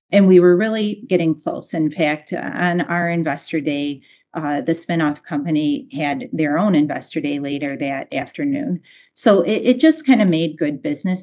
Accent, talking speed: American, 175 wpm